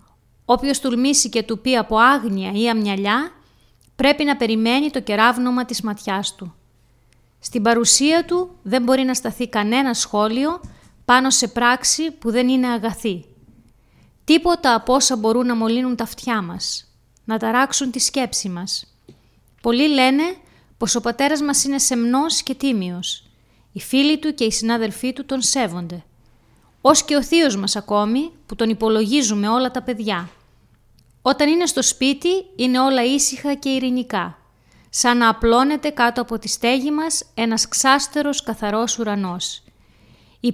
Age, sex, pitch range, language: 30-49, female, 210-275 Hz, Greek